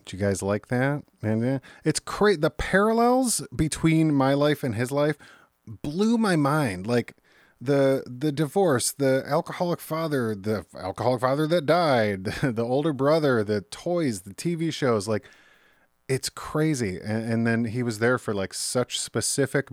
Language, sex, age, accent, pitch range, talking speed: English, male, 30-49, American, 95-135 Hz, 160 wpm